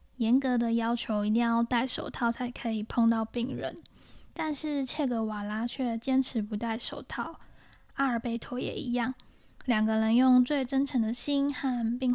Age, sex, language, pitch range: 10-29, female, Chinese, 220-255 Hz